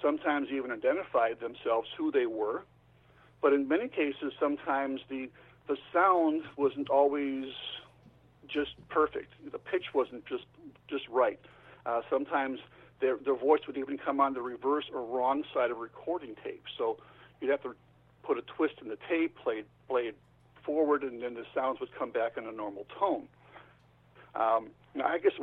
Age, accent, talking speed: 50-69, American, 170 wpm